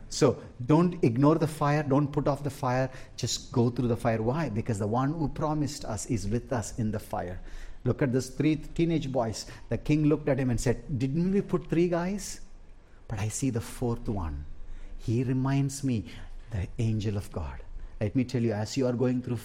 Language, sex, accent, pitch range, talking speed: English, male, Indian, 105-145 Hz, 210 wpm